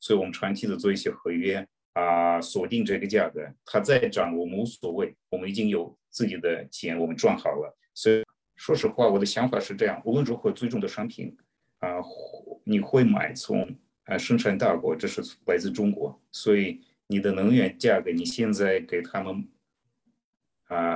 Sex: male